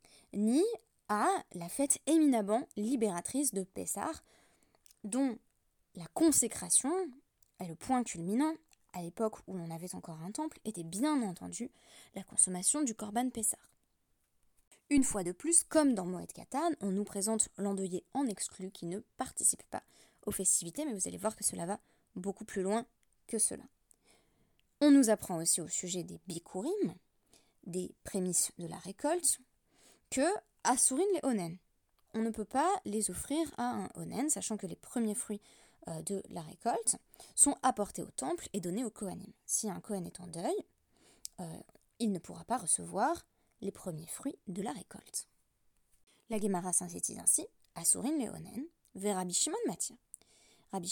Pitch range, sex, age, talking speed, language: 185-275 Hz, female, 20-39, 160 wpm, French